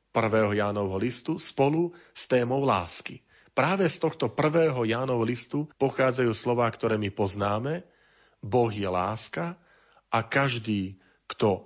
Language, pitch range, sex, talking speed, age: Slovak, 110-135 Hz, male, 125 wpm, 40-59